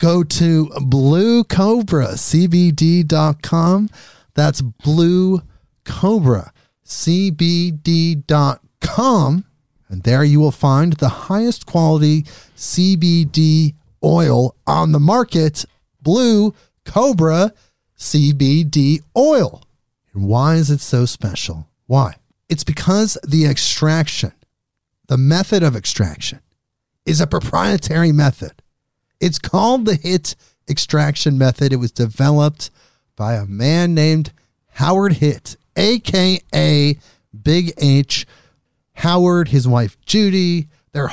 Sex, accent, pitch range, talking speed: male, American, 130-175 Hz, 95 wpm